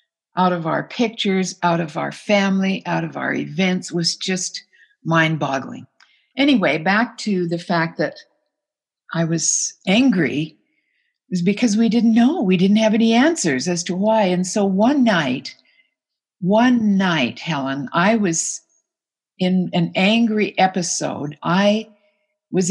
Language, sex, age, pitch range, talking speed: English, female, 60-79, 175-225 Hz, 140 wpm